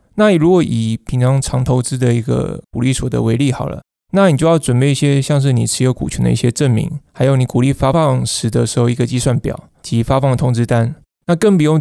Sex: male